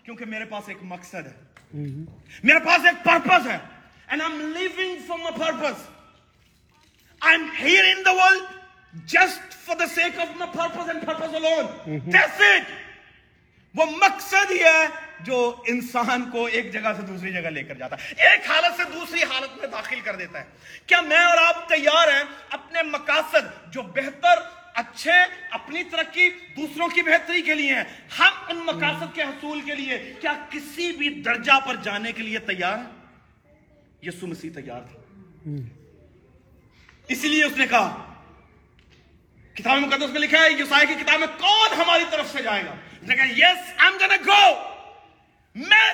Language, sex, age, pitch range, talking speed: Urdu, male, 40-59, 235-345 Hz, 130 wpm